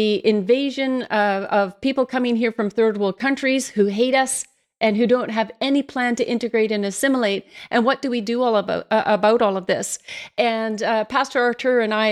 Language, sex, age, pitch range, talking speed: English, female, 40-59, 215-255 Hz, 210 wpm